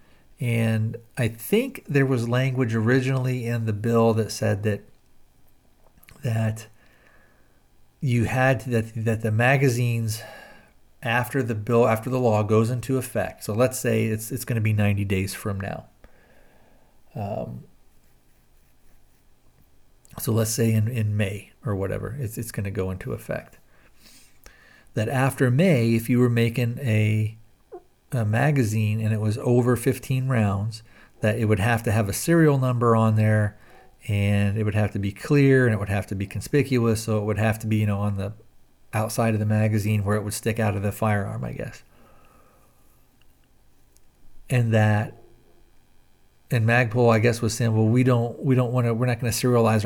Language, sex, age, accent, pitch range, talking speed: English, male, 50-69, American, 105-125 Hz, 170 wpm